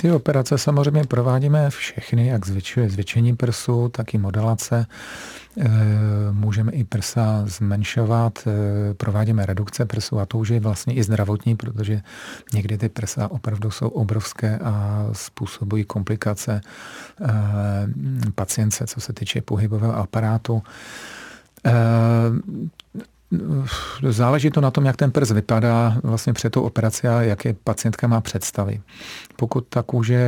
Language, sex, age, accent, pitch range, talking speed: Czech, male, 40-59, native, 105-120 Hz, 125 wpm